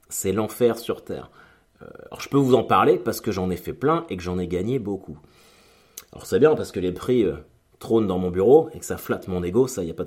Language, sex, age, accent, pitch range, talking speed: French, male, 30-49, French, 90-115 Hz, 270 wpm